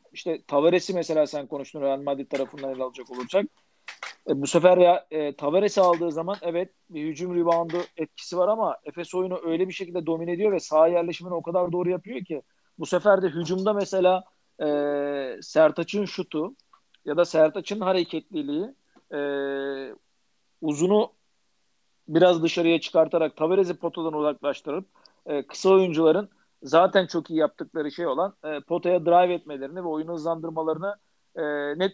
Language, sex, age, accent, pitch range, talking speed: Turkish, male, 50-69, native, 150-185 Hz, 145 wpm